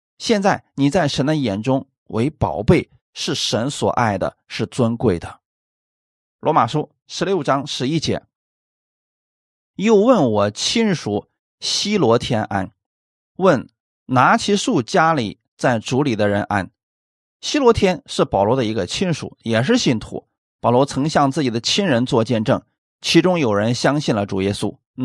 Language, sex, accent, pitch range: Chinese, male, native, 115-180 Hz